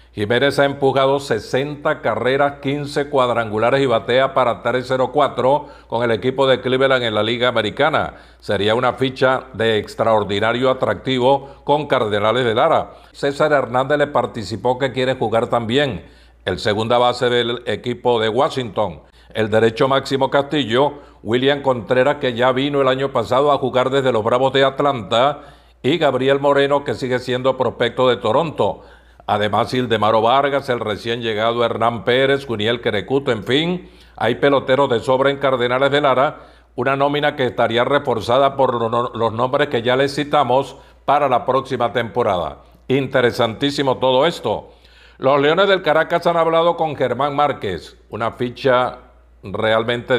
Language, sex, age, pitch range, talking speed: Spanish, male, 50-69, 115-140 Hz, 150 wpm